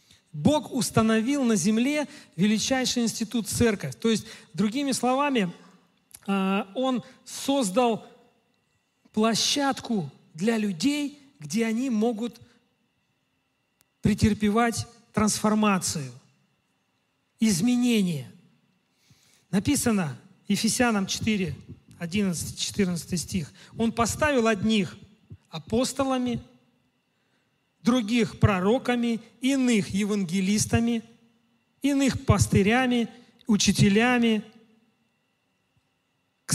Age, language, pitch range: 40-59, Russian, 195-245 Hz